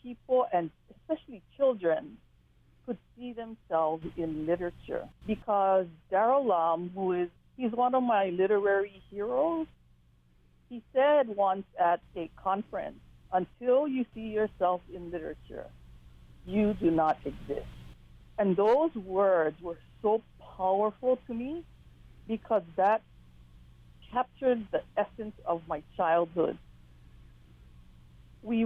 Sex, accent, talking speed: female, American, 110 wpm